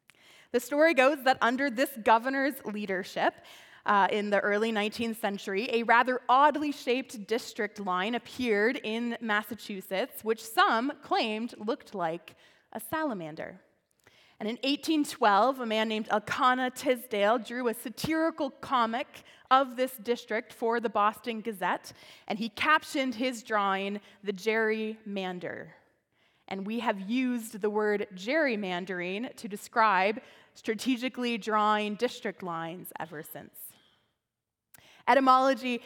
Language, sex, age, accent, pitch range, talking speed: English, female, 20-39, American, 210-260 Hz, 120 wpm